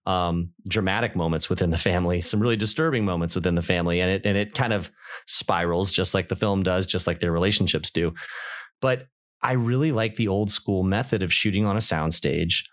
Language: English